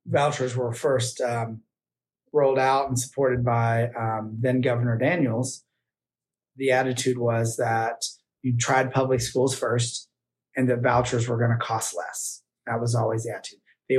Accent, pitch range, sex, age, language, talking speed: American, 115-130 Hz, male, 30-49, English, 150 wpm